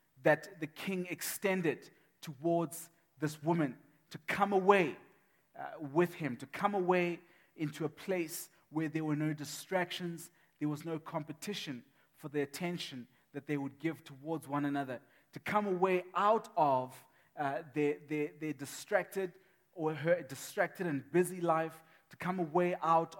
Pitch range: 145-180 Hz